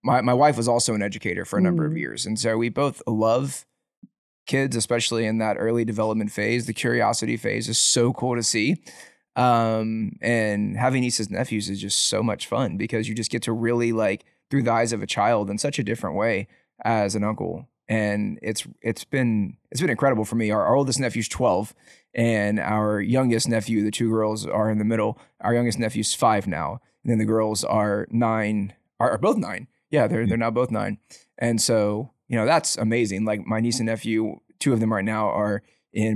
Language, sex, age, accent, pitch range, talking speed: English, male, 20-39, American, 110-125 Hz, 215 wpm